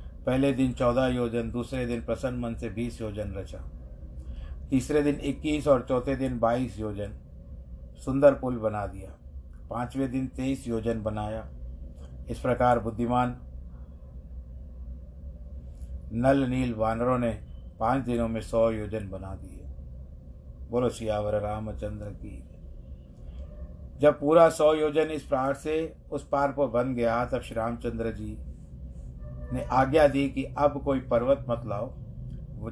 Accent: native